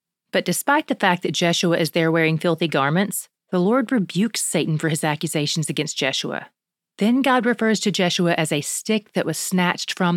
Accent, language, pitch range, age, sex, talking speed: American, English, 170-215 Hz, 30-49, female, 190 wpm